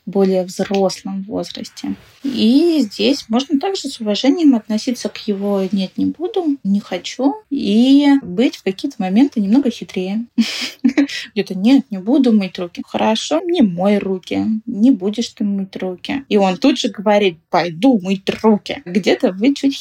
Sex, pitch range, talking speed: female, 200-260 Hz, 150 wpm